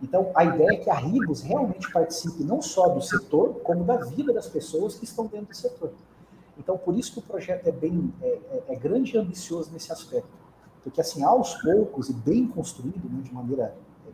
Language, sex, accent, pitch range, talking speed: Portuguese, male, Brazilian, 140-190 Hz, 210 wpm